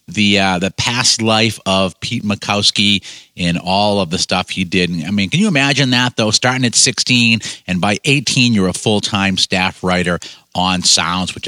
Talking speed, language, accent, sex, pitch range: 195 wpm, English, American, male, 95-125 Hz